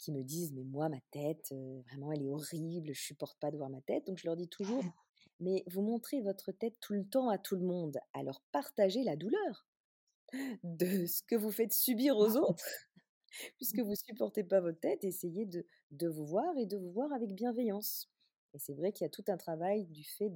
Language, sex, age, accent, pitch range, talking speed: French, female, 40-59, French, 165-225 Hz, 230 wpm